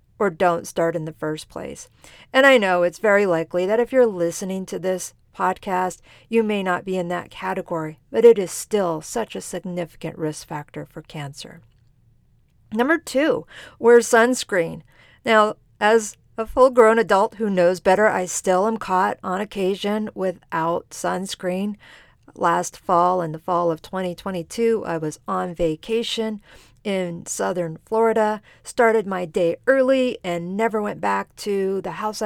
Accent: American